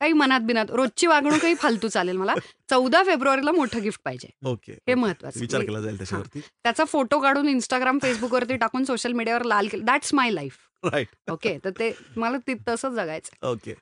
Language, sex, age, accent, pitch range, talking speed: Marathi, female, 30-49, native, 195-260 Hz, 155 wpm